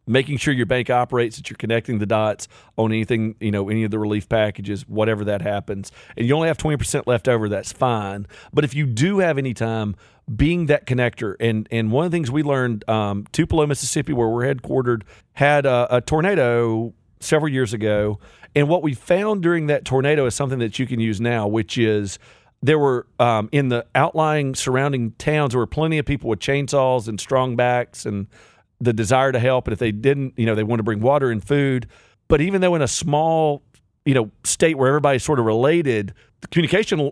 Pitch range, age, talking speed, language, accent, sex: 115-145 Hz, 40-59, 210 wpm, English, American, male